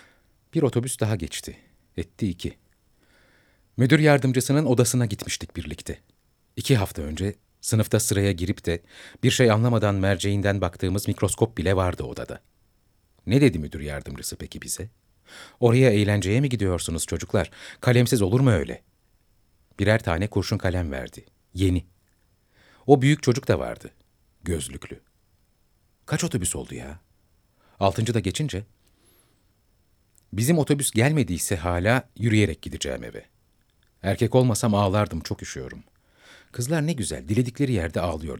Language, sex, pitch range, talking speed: Turkish, male, 90-115 Hz, 125 wpm